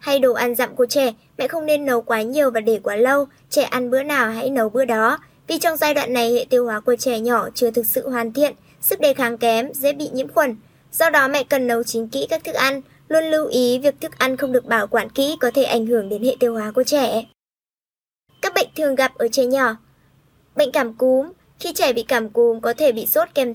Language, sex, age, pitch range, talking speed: Vietnamese, male, 20-39, 240-285 Hz, 250 wpm